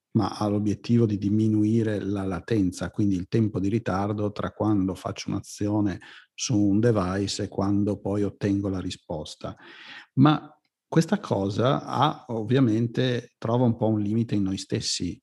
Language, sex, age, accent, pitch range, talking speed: Italian, male, 50-69, native, 100-120 Hz, 150 wpm